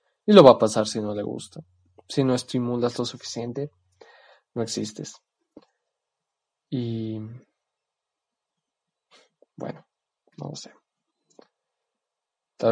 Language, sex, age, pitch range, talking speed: Spanish, male, 20-39, 110-125 Hz, 105 wpm